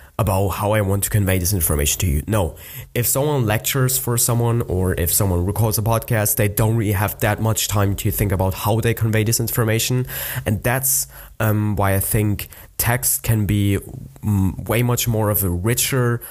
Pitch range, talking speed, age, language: 95-115 Hz, 195 wpm, 20-39, English